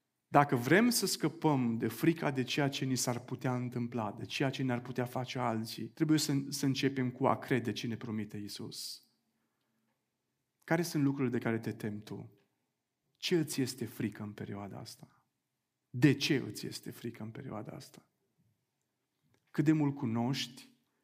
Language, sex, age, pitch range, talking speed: Romanian, male, 40-59, 120-155 Hz, 165 wpm